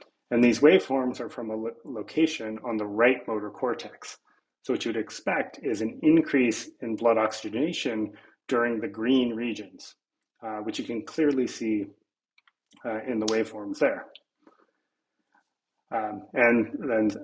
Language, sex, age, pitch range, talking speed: English, male, 30-49, 110-130 Hz, 145 wpm